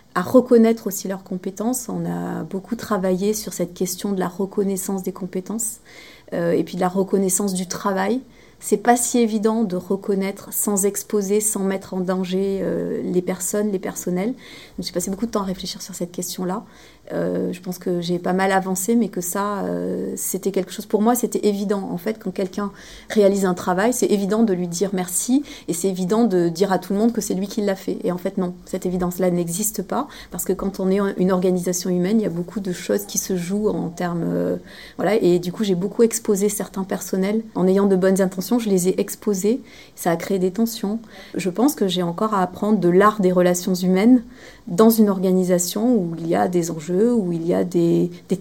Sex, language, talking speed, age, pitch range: female, French, 220 wpm, 30-49, 185-215 Hz